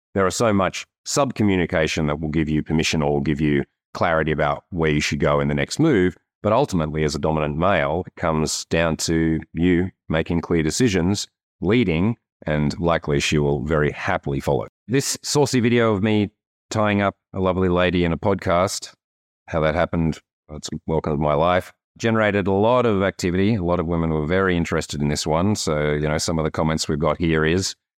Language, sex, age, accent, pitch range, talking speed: English, male, 30-49, Australian, 75-95 Hz, 200 wpm